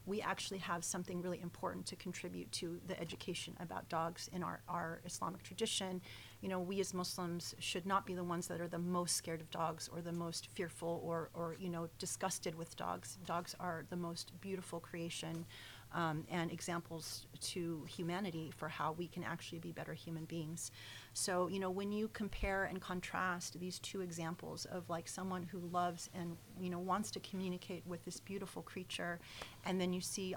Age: 30-49